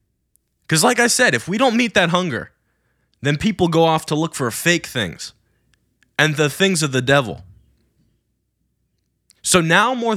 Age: 20-39